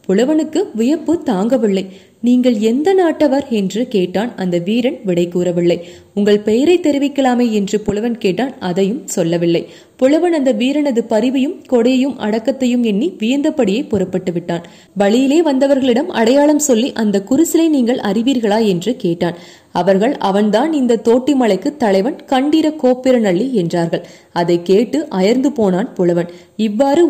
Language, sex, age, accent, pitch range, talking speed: Tamil, female, 20-39, native, 195-280 Hz, 120 wpm